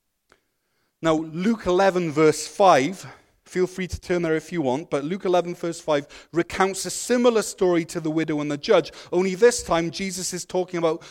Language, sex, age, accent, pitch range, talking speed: English, male, 30-49, British, 140-180 Hz, 190 wpm